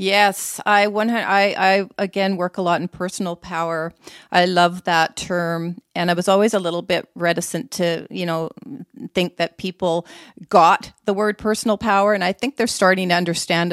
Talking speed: 185 wpm